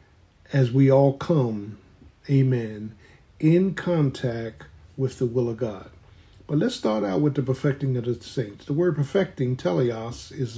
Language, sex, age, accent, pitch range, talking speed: English, male, 50-69, American, 100-145 Hz, 155 wpm